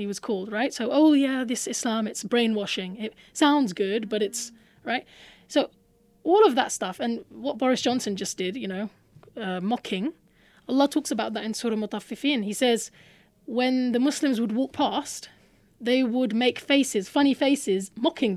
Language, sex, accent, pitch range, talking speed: English, female, British, 195-250 Hz, 175 wpm